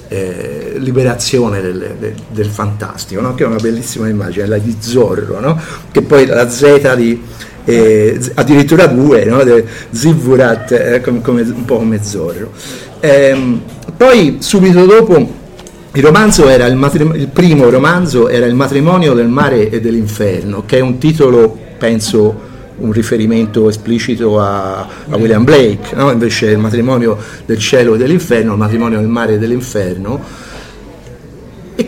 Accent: native